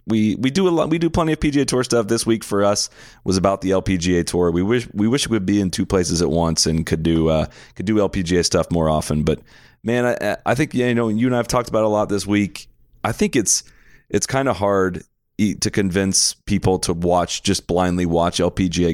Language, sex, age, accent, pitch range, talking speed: English, male, 30-49, American, 90-115 Hz, 240 wpm